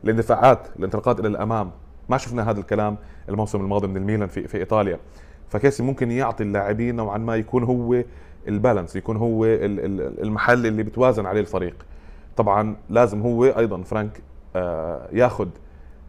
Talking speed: 140 wpm